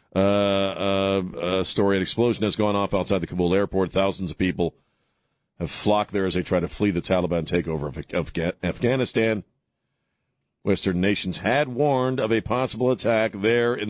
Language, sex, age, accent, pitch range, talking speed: English, male, 50-69, American, 85-105 Hz, 175 wpm